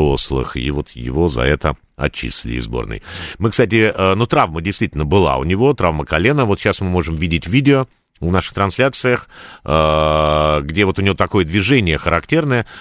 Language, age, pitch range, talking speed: Russian, 50-69, 70-105 Hz, 155 wpm